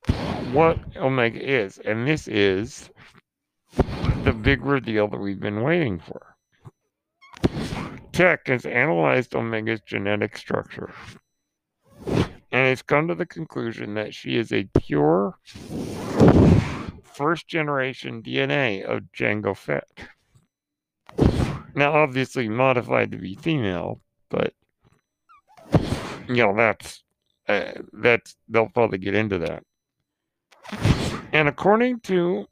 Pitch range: 105-155 Hz